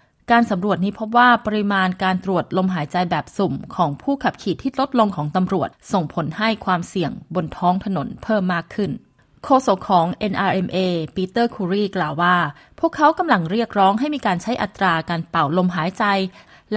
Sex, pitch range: female, 175-220 Hz